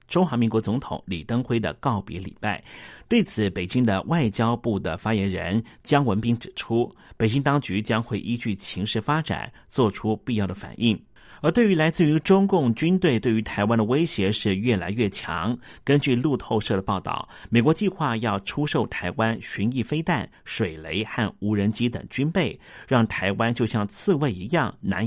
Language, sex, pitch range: Chinese, male, 100-145 Hz